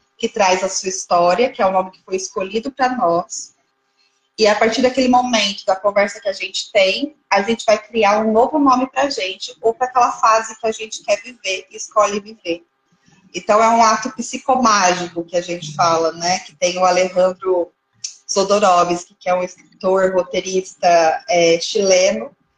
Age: 20-39